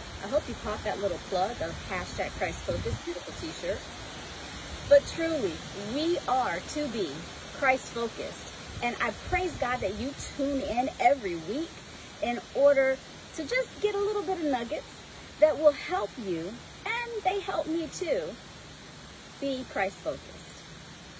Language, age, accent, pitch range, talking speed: English, 40-59, American, 200-305 Hz, 140 wpm